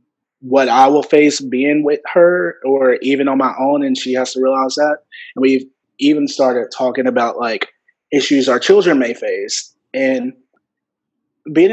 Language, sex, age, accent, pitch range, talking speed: English, male, 20-39, American, 125-150 Hz, 165 wpm